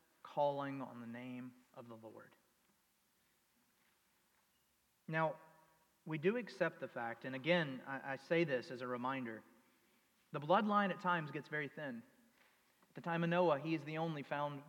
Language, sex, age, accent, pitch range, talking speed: English, male, 40-59, American, 135-175 Hz, 160 wpm